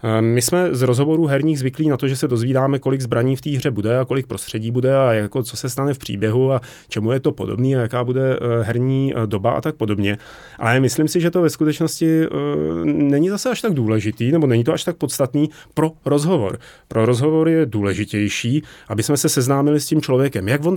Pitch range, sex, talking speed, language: 115-155 Hz, male, 215 wpm, Czech